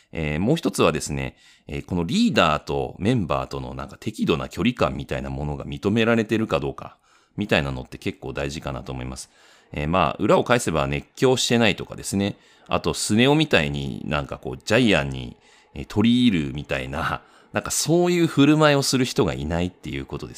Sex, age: male, 40-59